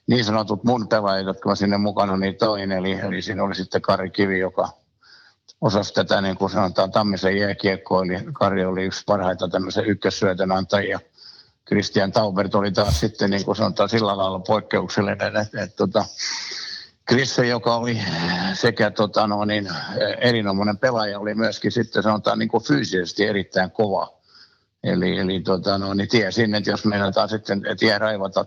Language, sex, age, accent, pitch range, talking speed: Finnish, male, 60-79, native, 100-110 Hz, 165 wpm